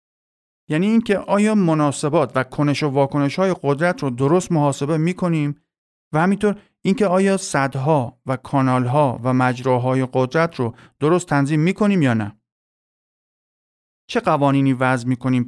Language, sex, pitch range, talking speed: Persian, male, 125-155 Hz, 130 wpm